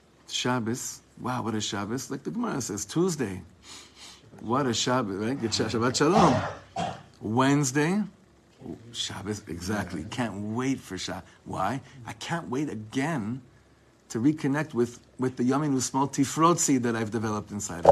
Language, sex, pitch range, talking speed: English, male, 115-155 Hz, 140 wpm